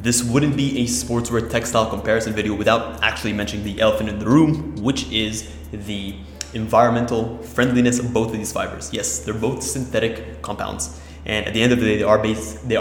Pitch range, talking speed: 100-120 Hz, 195 wpm